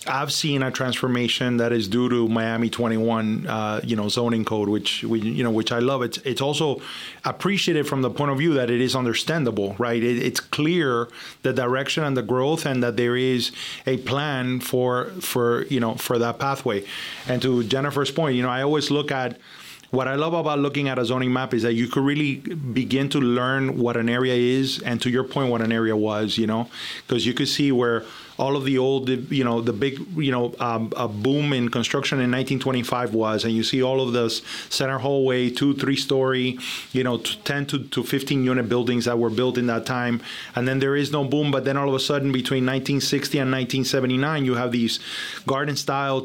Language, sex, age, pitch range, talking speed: English, male, 30-49, 120-140 Hz, 215 wpm